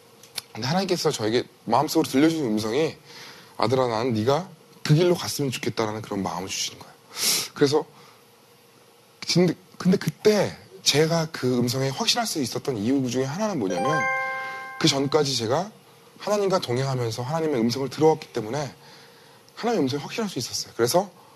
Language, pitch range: Korean, 135-200 Hz